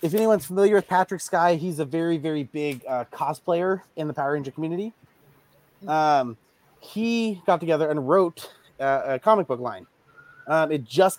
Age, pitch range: 30-49, 135-185 Hz